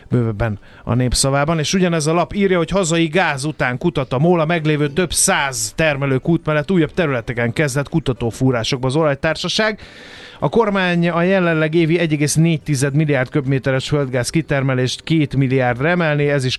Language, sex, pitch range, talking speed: Hungarian, male, 125-160 Hz, 155 wpm